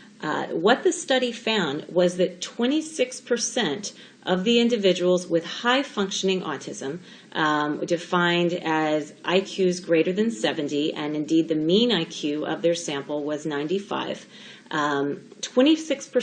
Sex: female